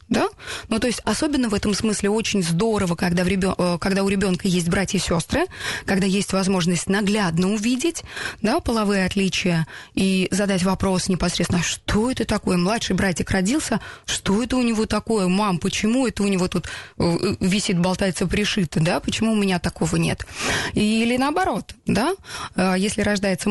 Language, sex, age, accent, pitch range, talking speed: Russian, female, 20-39, native, 185-220 Hz, 160 wpm